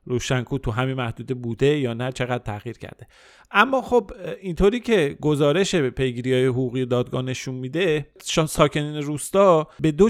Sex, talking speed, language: male, 150 wpm, Persian